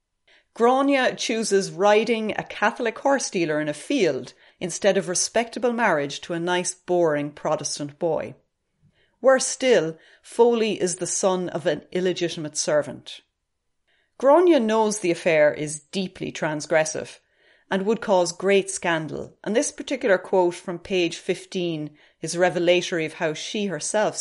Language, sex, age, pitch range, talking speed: English, female, 40-59, 160-205 Hz, 135 wpm